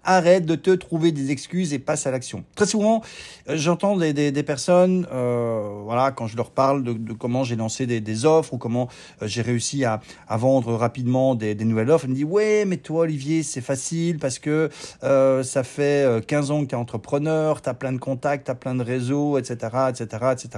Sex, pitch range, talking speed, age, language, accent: male, 125-160 Hz, 225 wpm, 40-59, French, French